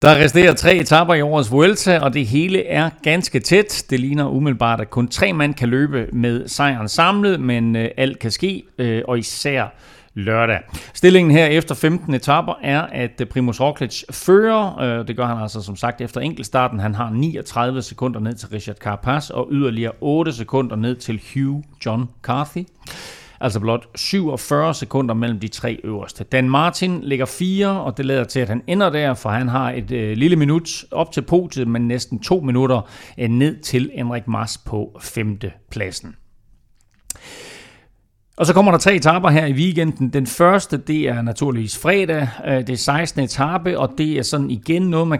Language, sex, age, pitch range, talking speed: Danish, male, 40-59, 115-150 Hz, 175 wpm